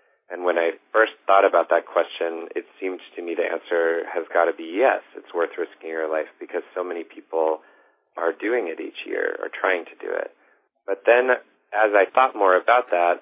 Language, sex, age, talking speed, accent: English, male, 40-59, 210 wpm, American